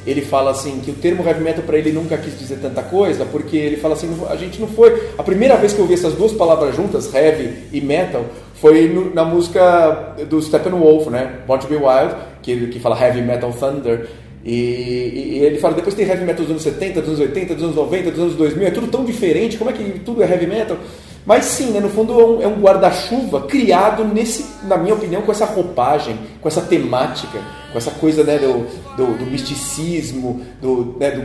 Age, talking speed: 30-49, 220 wpm